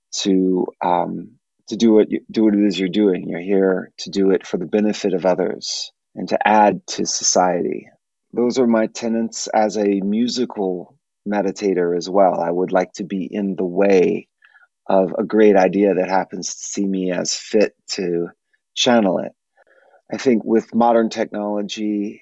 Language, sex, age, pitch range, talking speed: English, male, 30-49, 95-110 Hz, 175 wpm